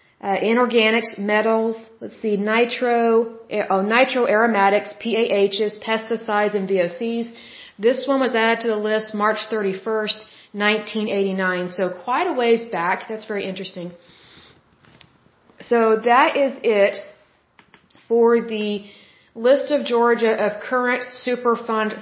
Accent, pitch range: American, 210-240 Hz